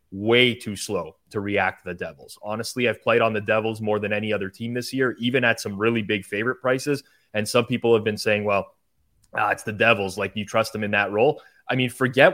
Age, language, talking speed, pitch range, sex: 20-39, English, 240 wpm, 100-125 Hz, male